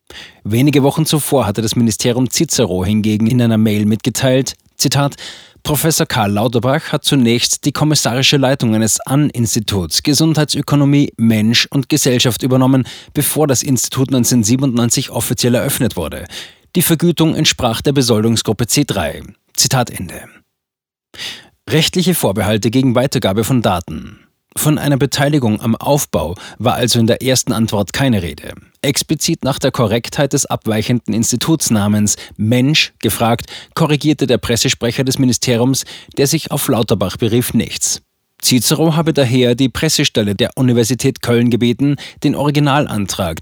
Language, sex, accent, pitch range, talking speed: German, male, German, 115-140 Hz, 130 wpm